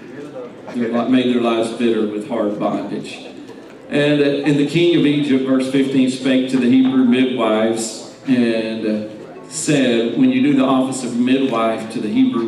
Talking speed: 170 wpm